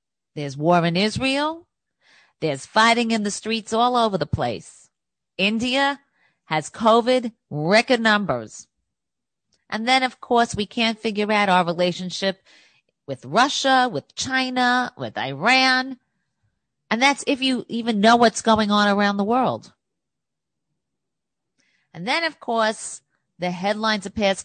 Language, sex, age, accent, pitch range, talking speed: English, female, 40-59, American, 180-240 Hz, 135 wpm